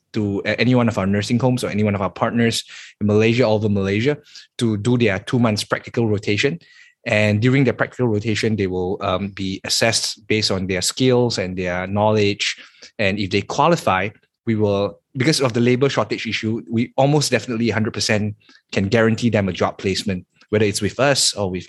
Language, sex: English, male